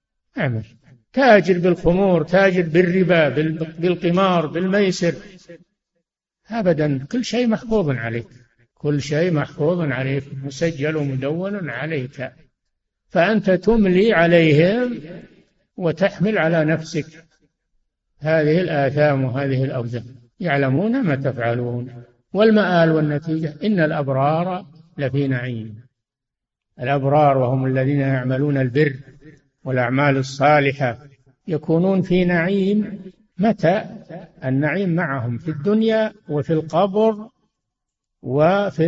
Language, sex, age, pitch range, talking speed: Arabic, male, 60-79, 140-175 Hz, 85 wpm